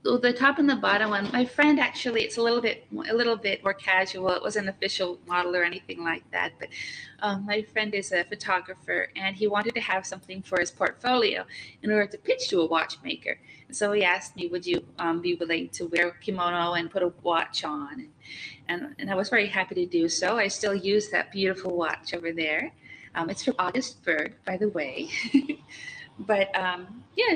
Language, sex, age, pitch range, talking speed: English, female, 30-49, 180-240 Hz, 210 wpm